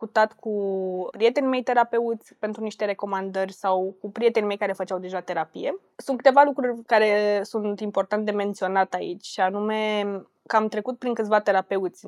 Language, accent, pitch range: Romanian, native, 200-240 Hz